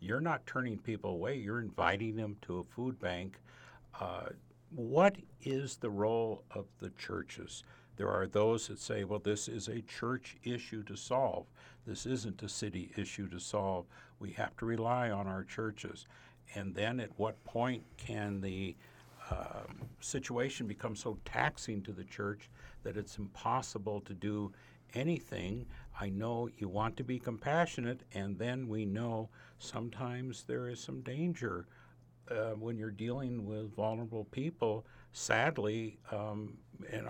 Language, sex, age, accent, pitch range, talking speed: English, male, 60-79, American, 105-120 Hz, 150 wpm